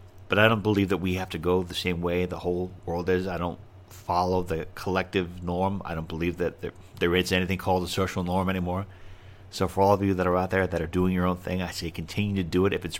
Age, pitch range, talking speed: 40-59, 90-100 Hz, 270 wpm